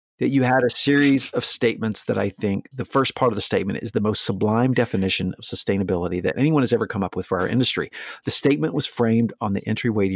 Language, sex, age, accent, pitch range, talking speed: English, male, 50-69, American, 100-125 Hz, 240 wpm